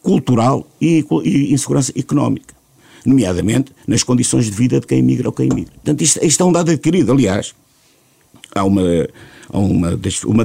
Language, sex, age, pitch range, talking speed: Portuguese, male, 50-69, 110-145 Hz, 165 wpm